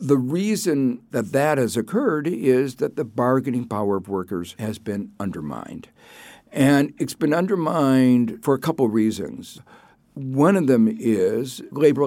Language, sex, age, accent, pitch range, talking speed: English, male, 60-79, American, 115-165 Hz, 150 wpm